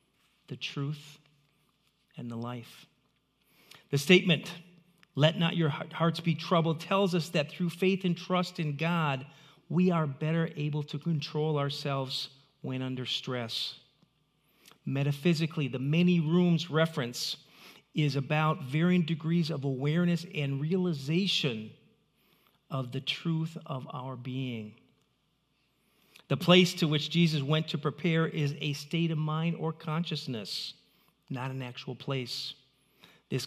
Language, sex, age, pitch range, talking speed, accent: English, male, 40-59, 135-165 Hz, 125 wpm, American